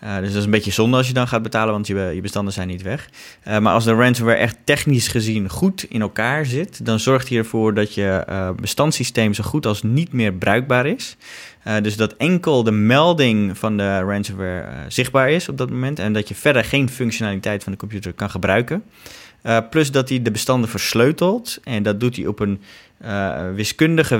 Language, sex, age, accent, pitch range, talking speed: Dutch, male, 20-39, Dutch, 100-125 Hz, 215 wpm